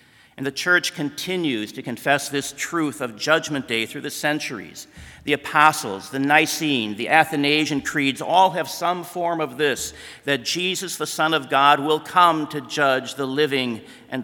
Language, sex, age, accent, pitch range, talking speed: English, male, 50-69, American, 125-155 Hz, 170 wpm